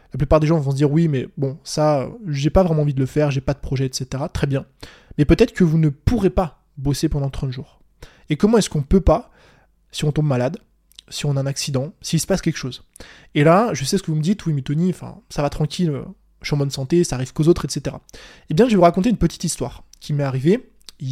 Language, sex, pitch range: French, male, 140-180 Hz